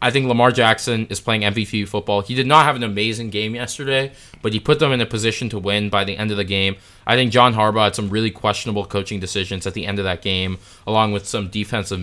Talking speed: 255 wpm